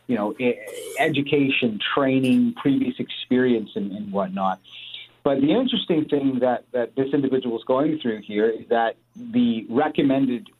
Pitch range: 115-145 Hz